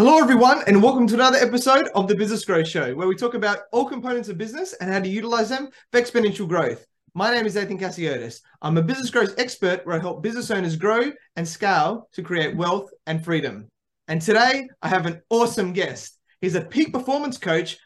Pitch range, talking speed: 170-230 Hz, 210 wpm